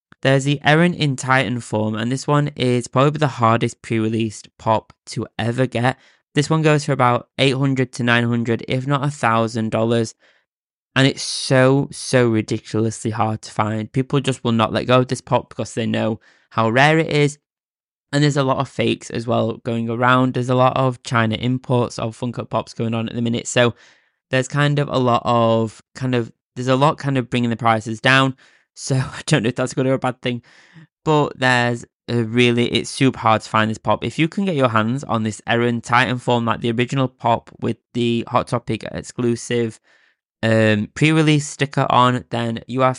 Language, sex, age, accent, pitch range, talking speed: English, male, 10-29, British, 115-130 Hz, 200 wpm